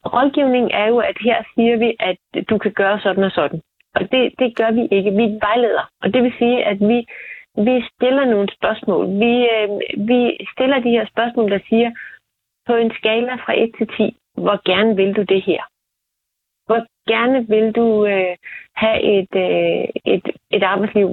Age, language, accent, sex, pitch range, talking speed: 30-49, Danish, native, female, 195-235 Hz, 180 wpm